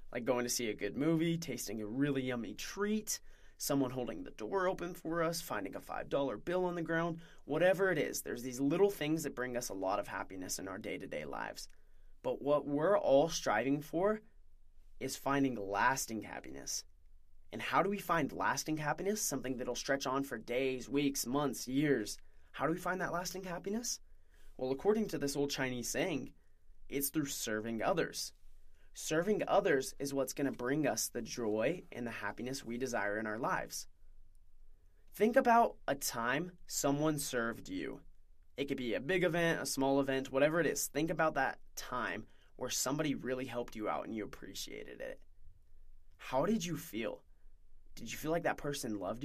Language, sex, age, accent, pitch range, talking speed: English, male, 20-39, American, 105-165 Hz, 185 wpm